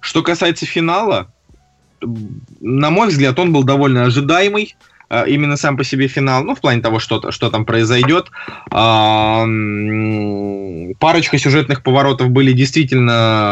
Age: 20-39